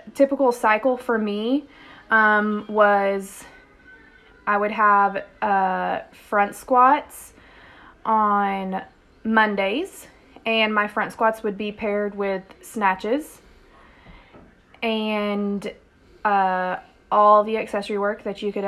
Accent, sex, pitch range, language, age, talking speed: American, female, 200-225 Hz, English, 20-39, 105 wpm